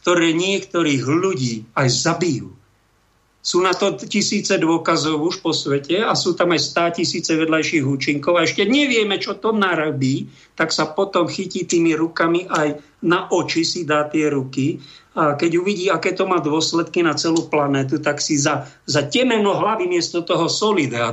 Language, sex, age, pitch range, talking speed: Slovak, male, 50-69, 145-185 Hz, 165 wpm